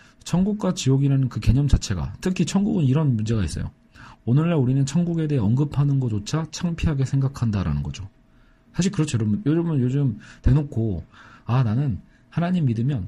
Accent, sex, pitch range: native, male, 110-150 Hz